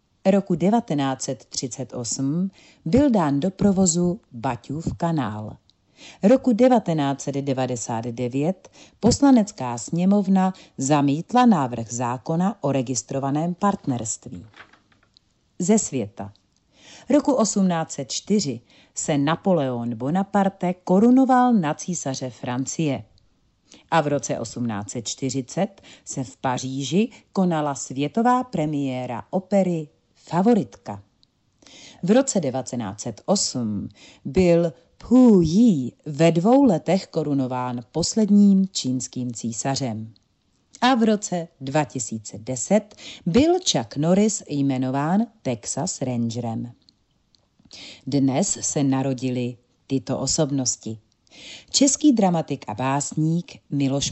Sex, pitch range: female, 125-190 Hz